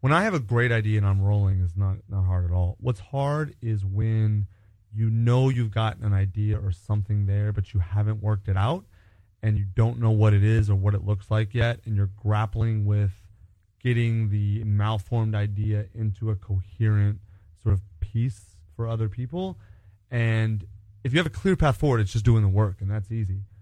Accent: American